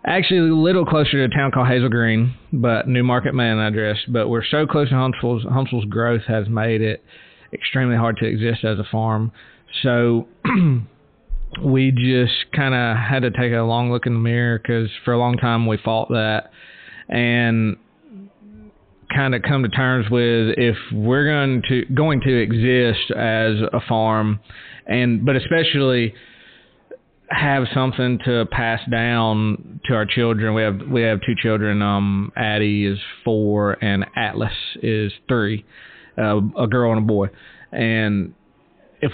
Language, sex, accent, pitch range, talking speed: English, male, American, 105-125 Hz, 160 wpm